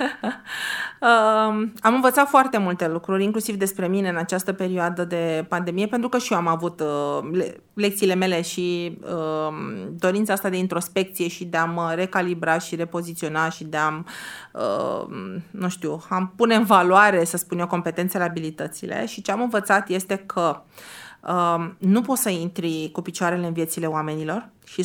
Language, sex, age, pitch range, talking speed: Romanian, female, 30-49, 170-200 Hz, 175 wpm